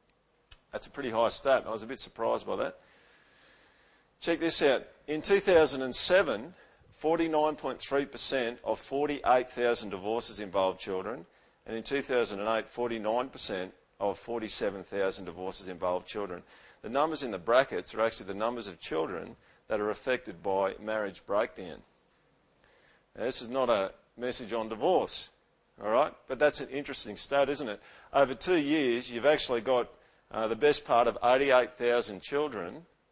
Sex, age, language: male, 50-69, English